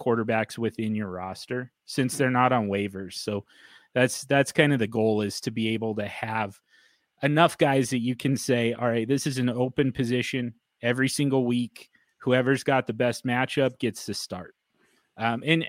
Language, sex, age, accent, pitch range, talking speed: English, male, 30-49, American, 110-135 Hz, 180 wpm